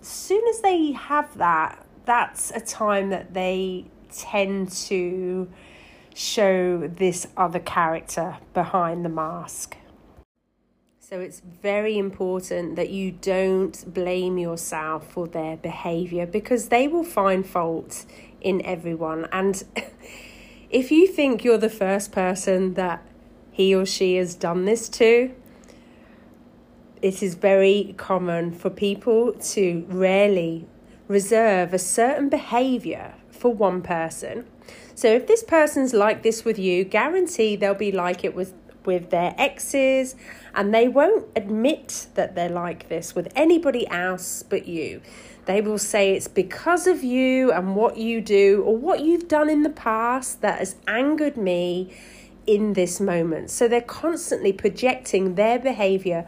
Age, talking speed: 30-49, 140 wpm